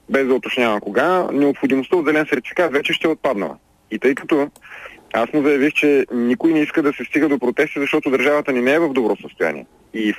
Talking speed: 220 wpm